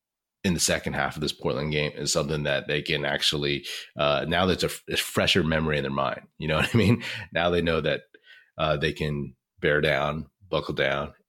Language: English